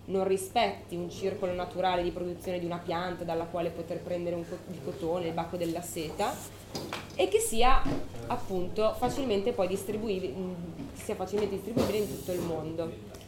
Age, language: 20-39, Italian